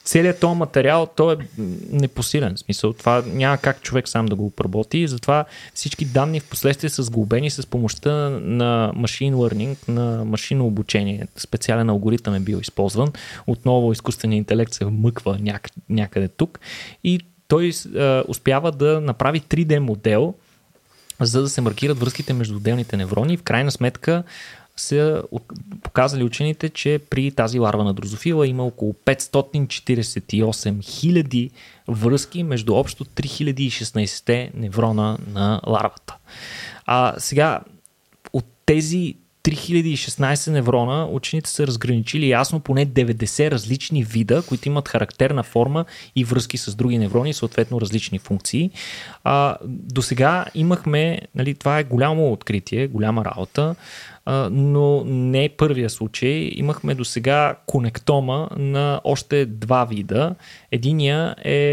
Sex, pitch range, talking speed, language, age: male, 115-145 Hz, 130 wpm, Bulgarian, 20-39